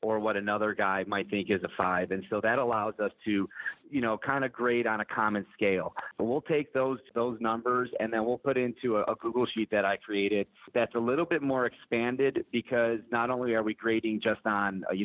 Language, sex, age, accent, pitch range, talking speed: English, male, 30-49, American, 105-120 Hz, 225 wpm